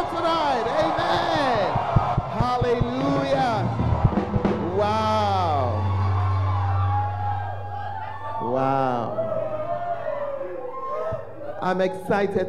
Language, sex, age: English, male, 50-69